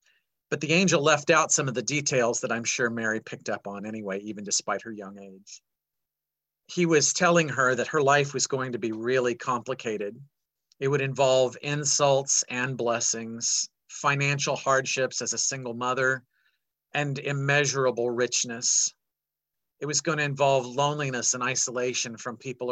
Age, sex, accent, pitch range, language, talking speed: 40-59, male, American, 120-145 Hz, English, 155 wpm